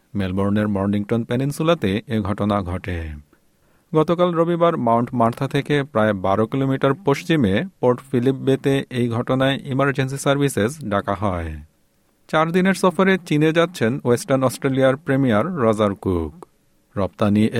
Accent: native